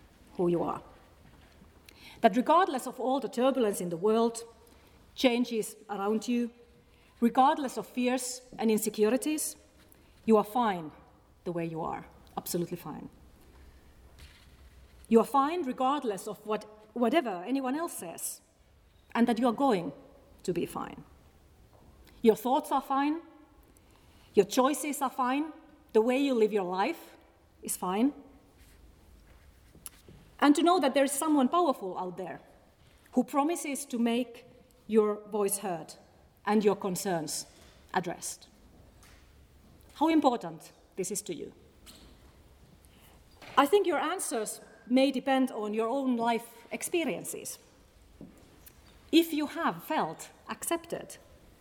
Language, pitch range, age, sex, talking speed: English, 190-270 Hz, 40-59, female, 125 wpm